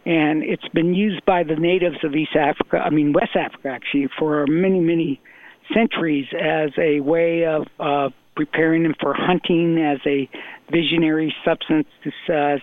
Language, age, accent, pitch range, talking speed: English, 60-79, American, 150-175 Hz, 160 wpm